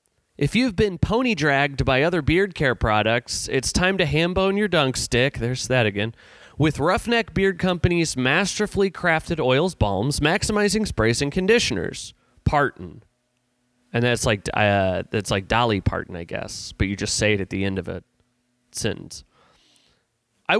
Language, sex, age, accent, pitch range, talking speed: English, male, 30-49, American, 115-175 Hz, 160 wpm